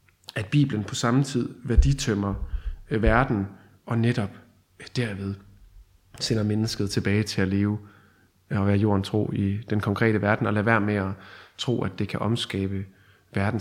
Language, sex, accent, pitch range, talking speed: Danish, male, native, 100-125 Hz, 160 wpm